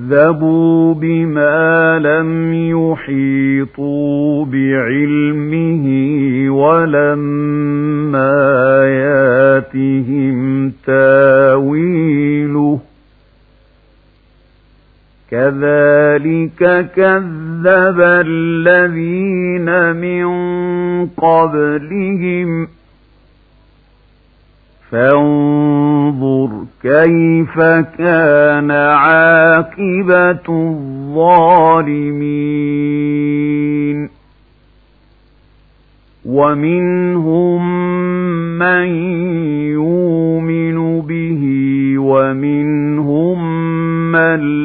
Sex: male